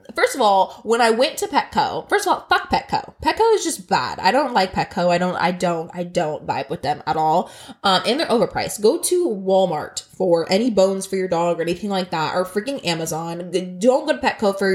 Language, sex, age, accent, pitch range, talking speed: English, female, 20-39, American, 185-275 Hz, 230 wpm